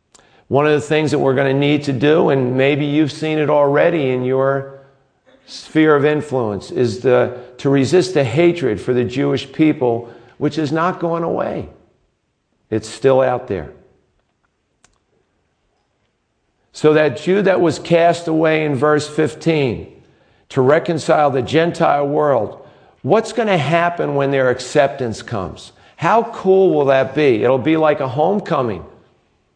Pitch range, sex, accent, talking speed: 130-165 Hz, male, American, 150 wpm